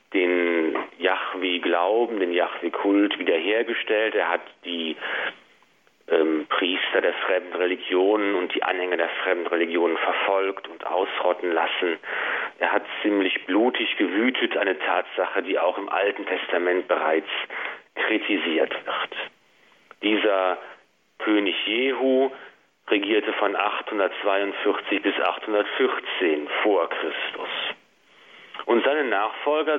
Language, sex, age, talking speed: German, male, 40-59, 105 wpm